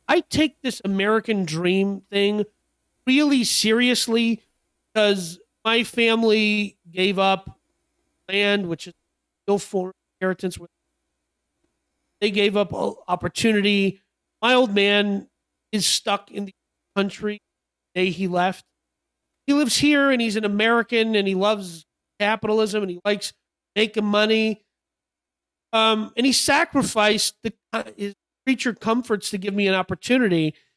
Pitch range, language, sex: 185-225 Hz, English, male